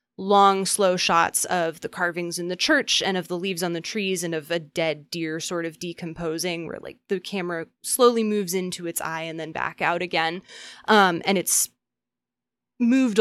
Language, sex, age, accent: English, female, 20-39, American